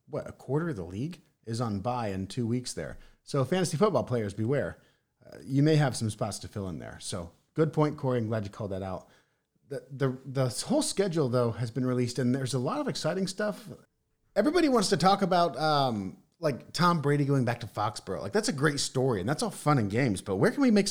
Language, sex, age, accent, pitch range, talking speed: English, male, 30-49, American, 115-160 Hz, 235 wpm